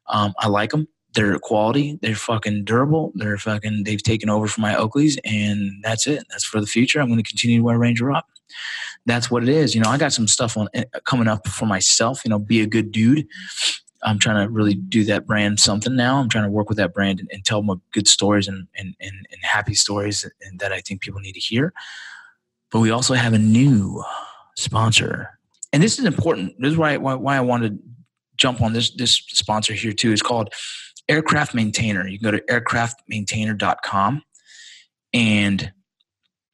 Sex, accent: male, American